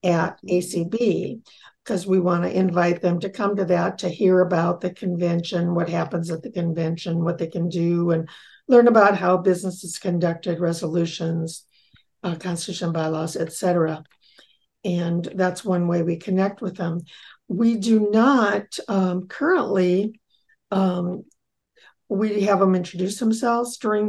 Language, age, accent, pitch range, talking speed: English, 50-69, American, 180-215 Hz, 145 wpm